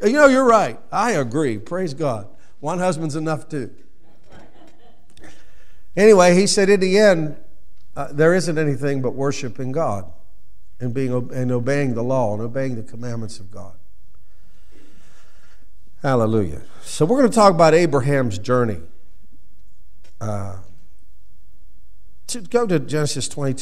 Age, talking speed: 50-69, 130 wpm